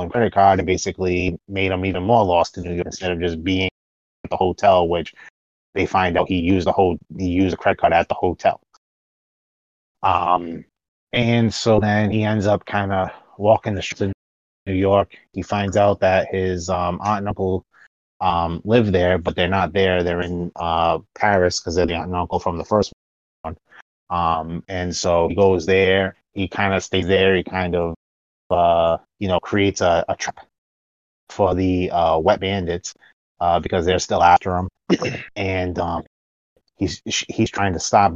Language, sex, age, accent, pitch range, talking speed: English, male, 20-39, American, 85-100 Hz, 190 wpm